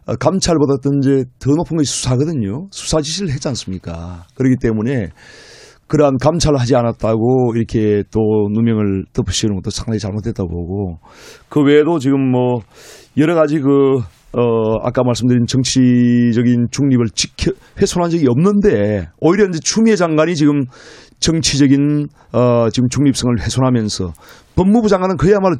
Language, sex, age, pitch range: Korean, male, 30-49, 120-150 Hz